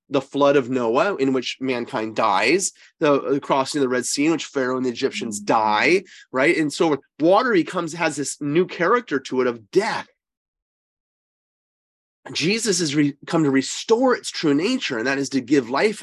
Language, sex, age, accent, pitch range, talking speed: English, male, 30-49, American, 130-165 Hz, 185 wpm